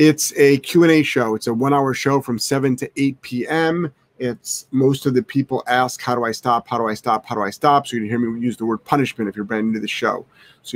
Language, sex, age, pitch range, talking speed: English, male, 30-49, 115-140 Hz, 270 wpm